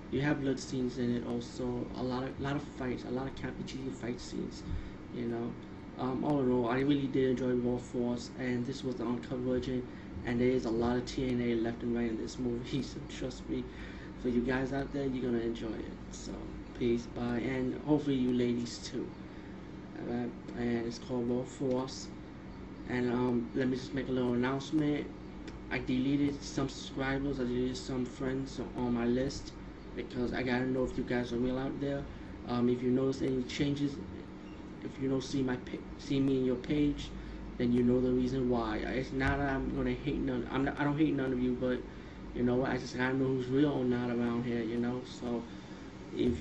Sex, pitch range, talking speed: male, 120-135 Hz, 215 wpm